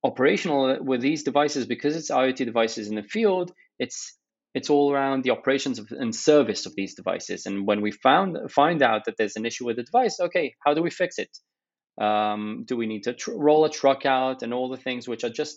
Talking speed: 225 wpm